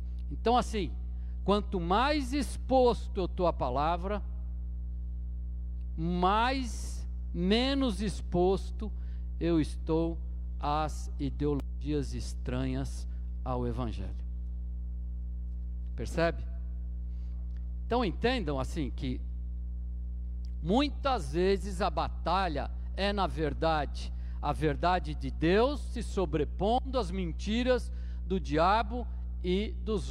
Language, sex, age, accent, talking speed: Portuguese, male, 50-69, Brazilian, 85 wpm